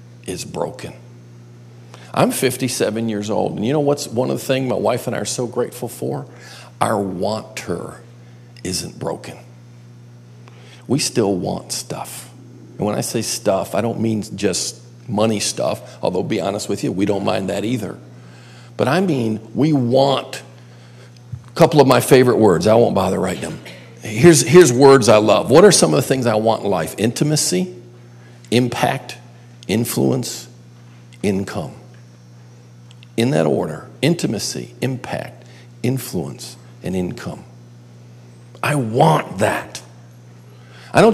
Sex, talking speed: male, 145 wpm